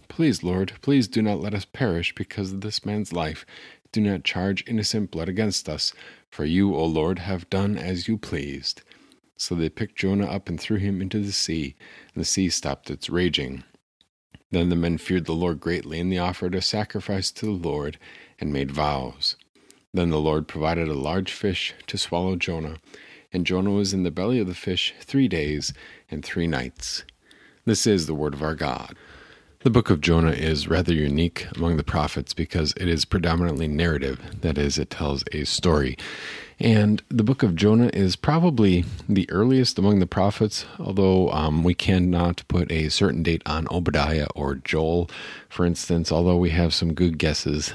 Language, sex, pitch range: English, male, 80-100 Hz